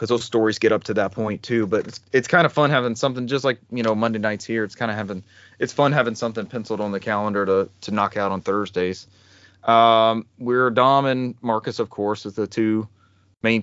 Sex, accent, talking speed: male, American, 230 wpm